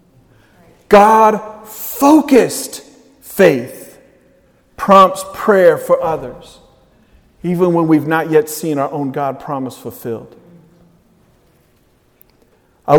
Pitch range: 150-200 Hz